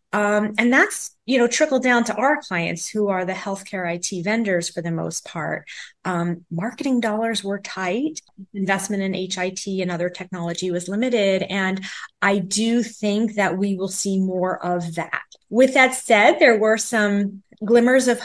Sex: female